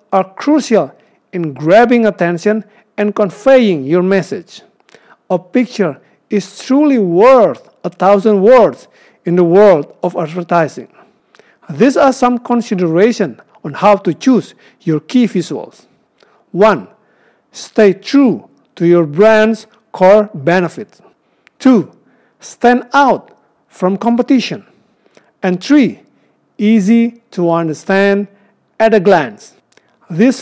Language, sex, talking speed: Indonesian, male, 110 wpm